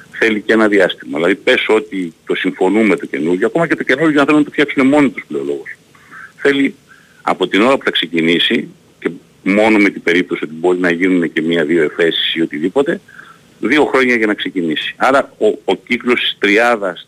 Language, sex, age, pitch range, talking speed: Greek, male, 50-69, 110-175 Hz, 190 wpm